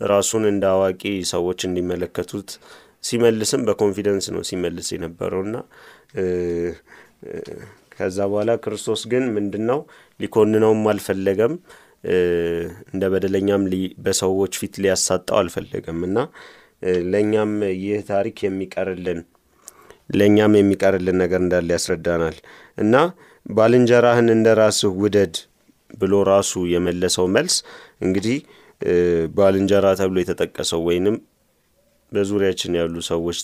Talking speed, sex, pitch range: 85 wpm, male, 90-105 Hz